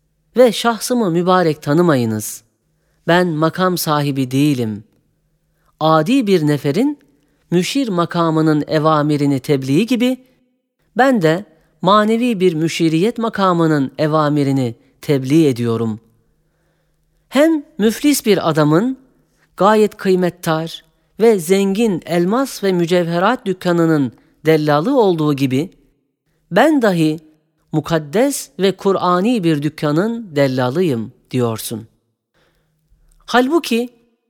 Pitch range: 150-225 Hz